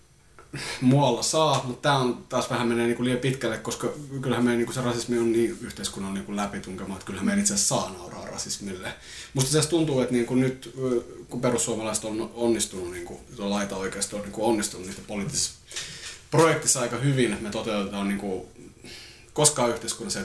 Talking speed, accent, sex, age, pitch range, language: 185 wpm, native, male, 30-49, 100-125 Hz, Finnish